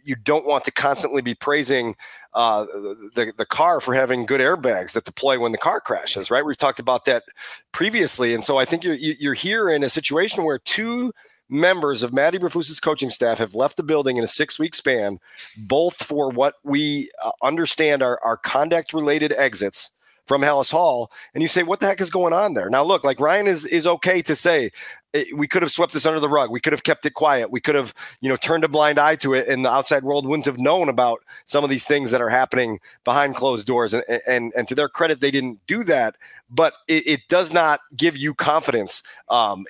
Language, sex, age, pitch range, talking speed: English, male, 40-59, 130-165 Hz, 220 wpm